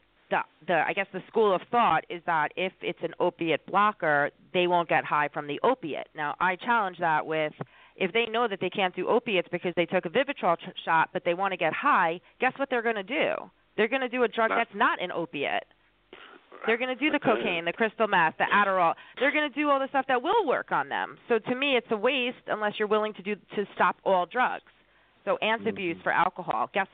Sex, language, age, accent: female, English, 30-49, American